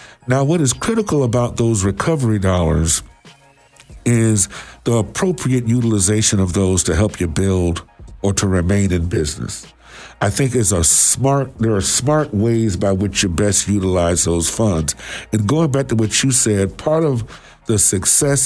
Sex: male